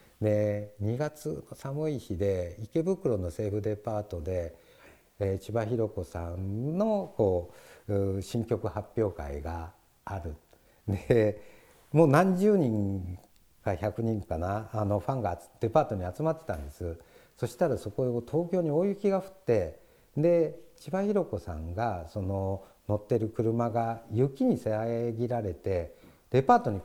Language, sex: Japanese, male